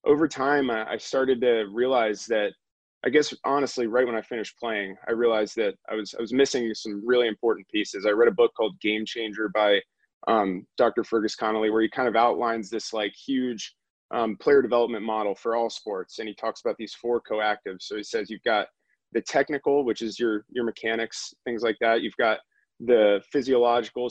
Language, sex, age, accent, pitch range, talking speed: English, male, 20-39, American, 110-140 Hz, 200 wpm